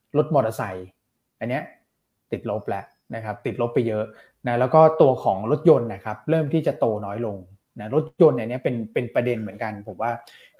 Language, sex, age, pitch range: Thai, male, 20-39, 115-145 Hz